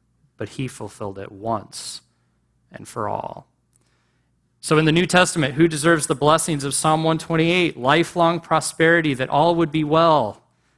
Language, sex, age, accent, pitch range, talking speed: English, male, 30-49, American, 110-150 Hz, 150 wpm